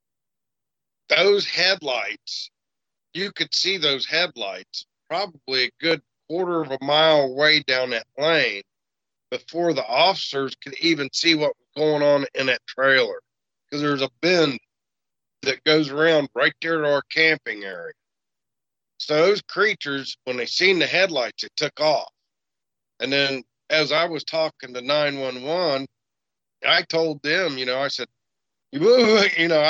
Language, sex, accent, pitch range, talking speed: English, male, American, 130-165 Hz, 145 wpm